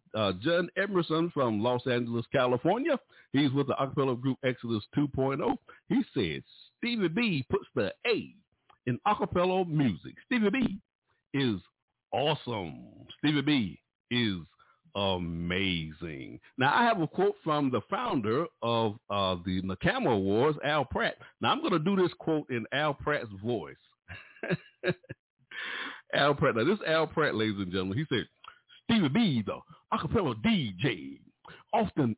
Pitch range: 125-200 Hz